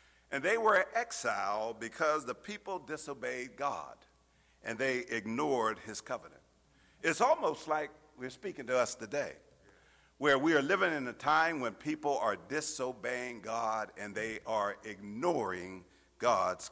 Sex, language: male, English